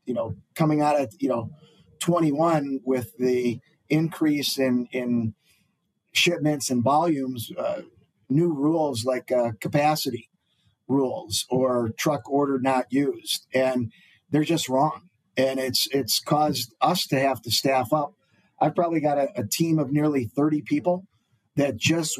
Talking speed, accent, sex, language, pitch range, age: 145 wpm, American, male, English, 130-155 Hz, 50-69